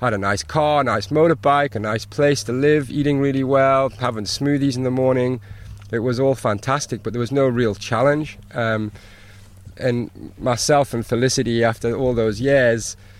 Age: 30-49